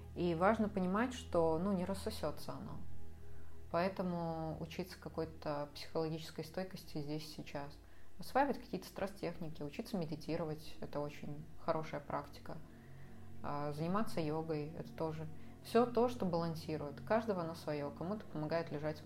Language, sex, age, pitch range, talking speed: Russian, female, 20-39, 150-170 Hz, 125 wpm